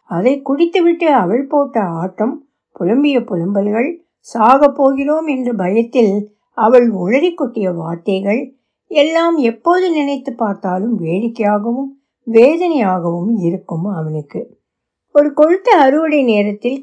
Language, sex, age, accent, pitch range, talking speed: Tamil, female, 60-79, native, 210-290 Hz, 95 wpm